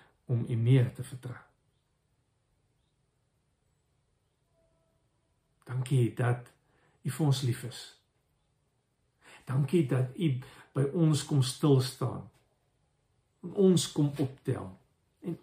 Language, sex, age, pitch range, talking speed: English, male, 50-69, 125-145 Hz, 95 wpm